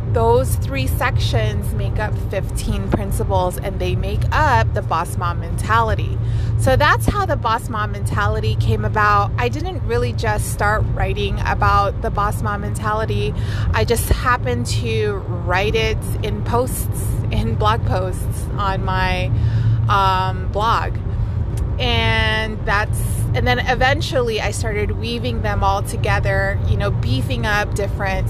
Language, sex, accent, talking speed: English, female, American, 140 wpm